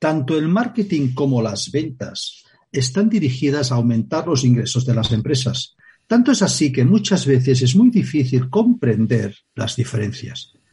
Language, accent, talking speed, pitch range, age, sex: Spanish, Spanish, 150 wpm, 120-180 Hz, 50-69, male